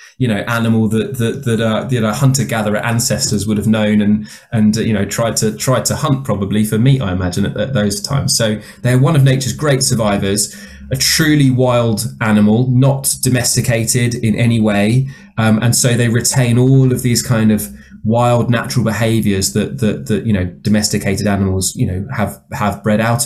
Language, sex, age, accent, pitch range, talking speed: English, male, 20-39, British, 105-135 Hz, 195 wpm